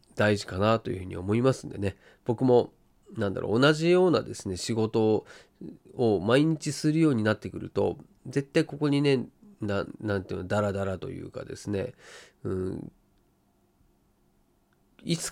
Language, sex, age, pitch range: Japanese, male, 40-59, 100-150 Hz